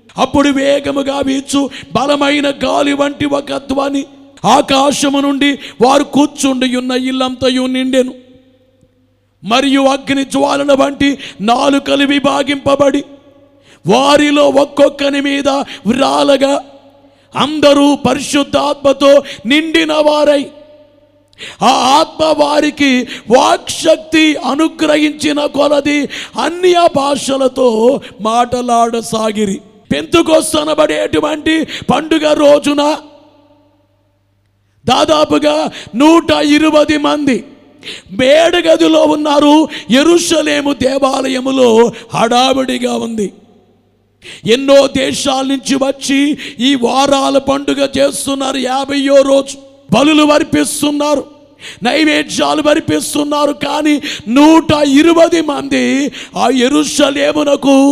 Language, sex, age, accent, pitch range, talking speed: Telugu, male, 50-69, native, 260-295 Hz, 75 wpm